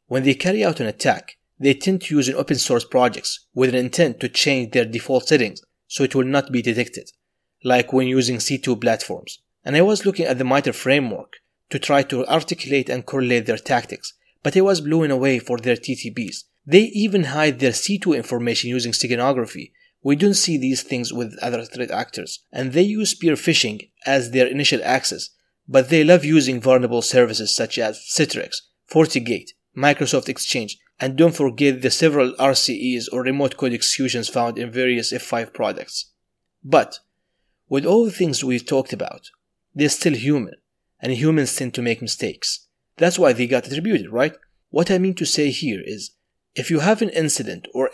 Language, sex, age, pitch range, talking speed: English, male, 30-49, 125-160 Hz, 185 wpm